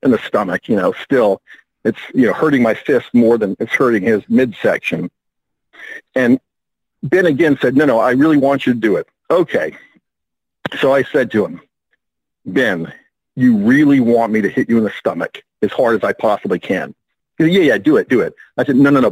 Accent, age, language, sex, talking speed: American, 50-69, English, male, 205 wpm